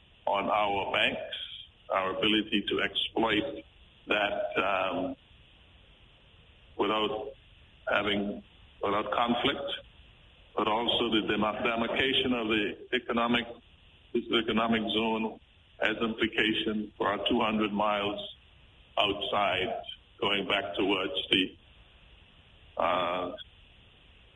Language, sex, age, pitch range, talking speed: English, male, 50-69, 100-110 Hz, 85 wpm